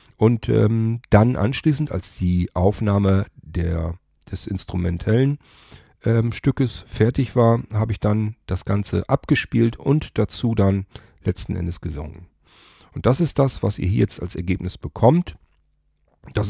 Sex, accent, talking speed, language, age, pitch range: male, German, 135 wpm, German, 40-59, 95-115 Hz